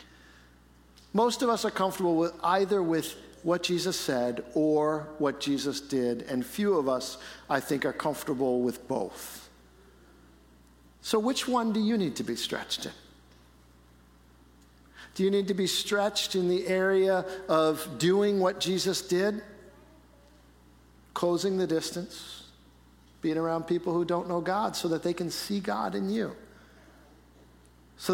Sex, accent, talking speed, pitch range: male, American, 145 wpm, 120-190 Hz